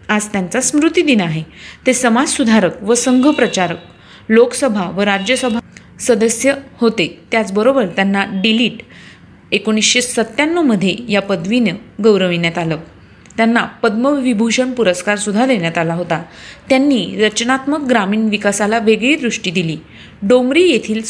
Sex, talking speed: female, 110 wpm